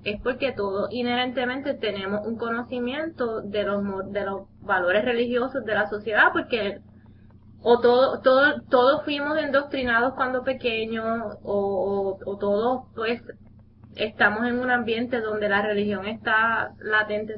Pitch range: 205-260 Hz